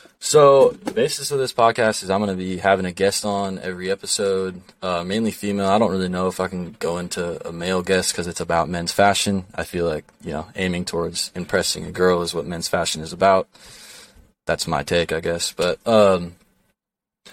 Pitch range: 90-100 Hz